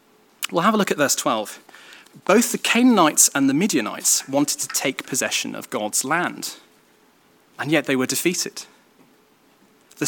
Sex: male